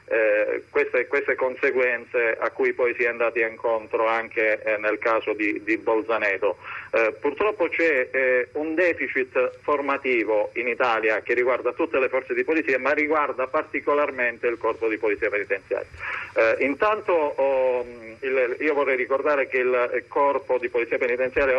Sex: male